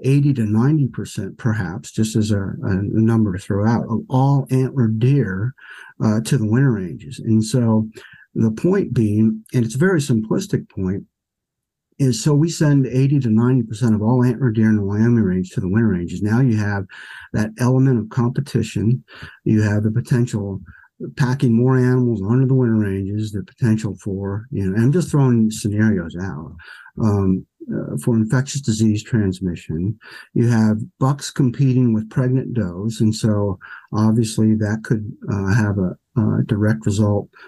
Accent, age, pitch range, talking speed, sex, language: American, 50-69, 110-130 Hz, 170 wpm, male, English